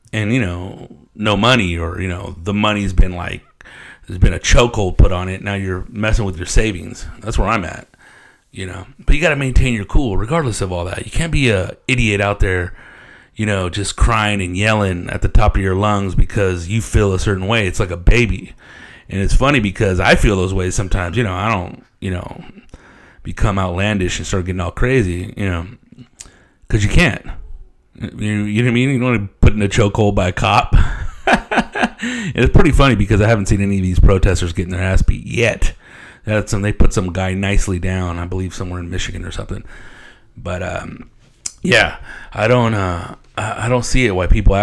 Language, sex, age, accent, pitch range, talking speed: English, male, 30-49, American, 95-115 Hz, 210 wpm